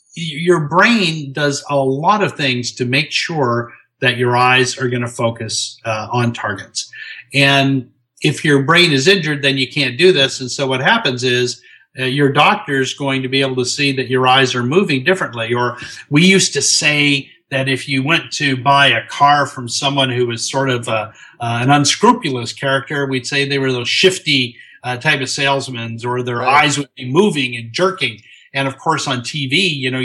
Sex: male